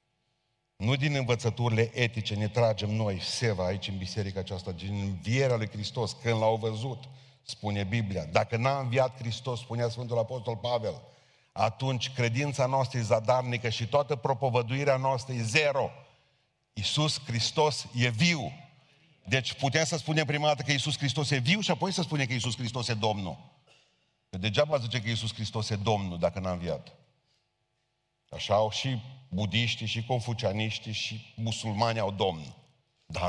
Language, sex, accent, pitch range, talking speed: Romanian, male, native, 110-145 Hz, 155 wpm